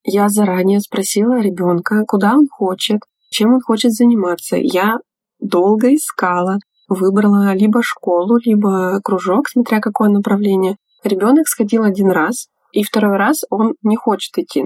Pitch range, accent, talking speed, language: 190-230 Hz, native, 135 wpm, Russian